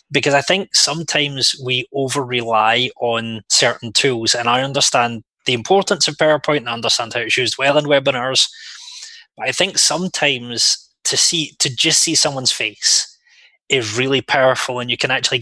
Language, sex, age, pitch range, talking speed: English, male, 20-39, 120-140 Hz, 170 wpm